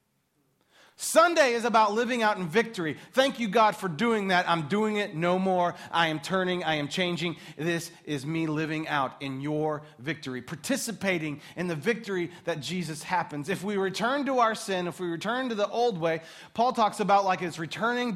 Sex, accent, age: male, American, 30-49